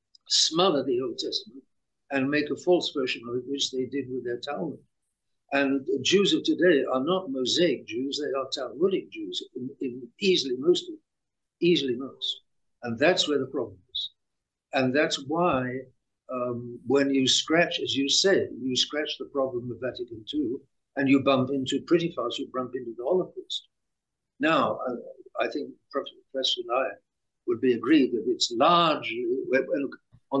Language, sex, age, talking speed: English, male, 60-79, 170 wpm